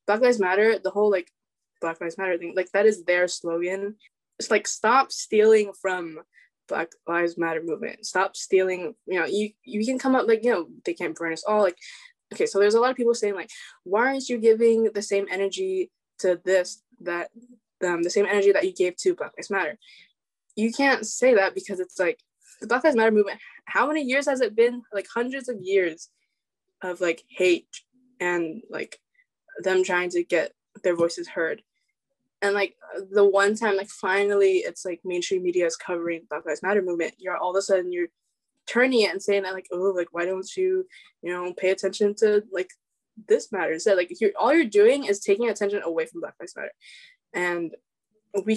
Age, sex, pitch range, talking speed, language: 10-29, female, 180-235 Hz, 205 wpm, English